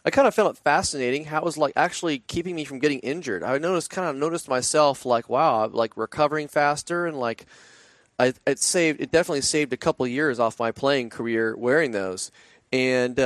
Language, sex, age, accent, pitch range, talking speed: English, male, 30-49, American, 120-155 Hz, 210 wpm